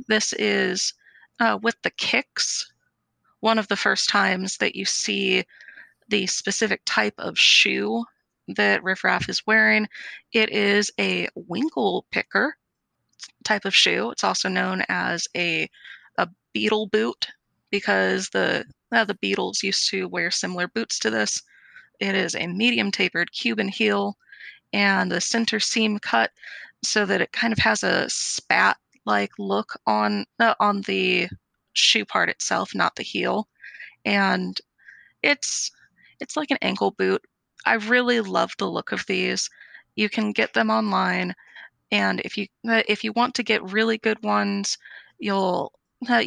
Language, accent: English, American